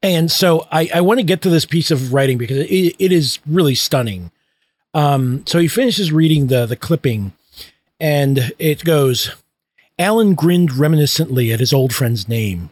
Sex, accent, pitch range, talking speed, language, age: male, American, 120-160 Hz, 170 wpm, English, 40-59